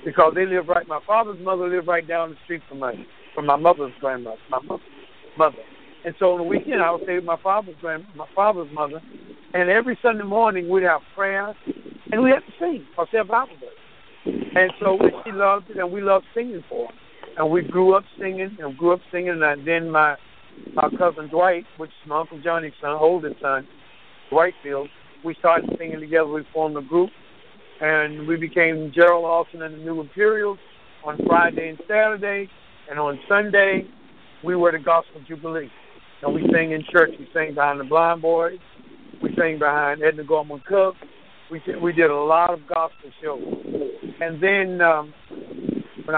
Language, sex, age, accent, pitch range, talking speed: English, male, 60-79, American, 155-190 Hz, 195 wpm